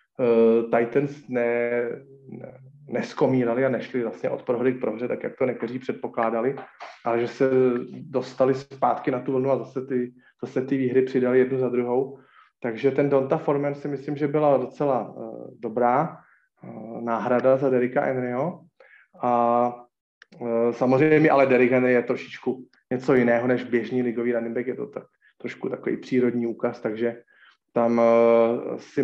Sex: male